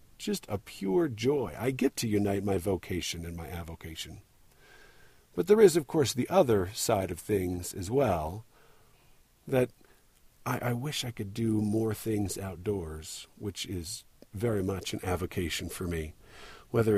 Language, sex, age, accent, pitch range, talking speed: English, male, 50-69, American, 95-115 Hz, 155 wpm